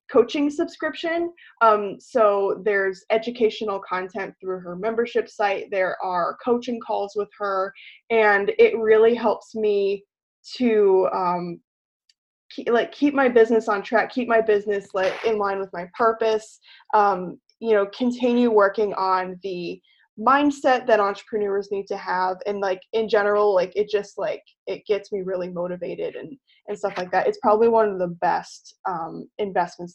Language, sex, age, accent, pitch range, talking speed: English, female, 20-39, American, 190-230 Hz, 160 wpm